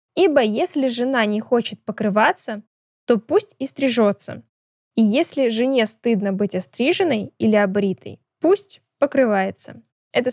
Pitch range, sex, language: 205-255 Hz, female, Russian